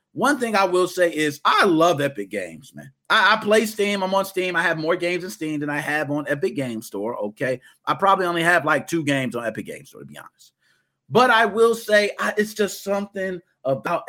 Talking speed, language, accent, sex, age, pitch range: 235 wpm, English, American, male, 40-59, 135-190 Hz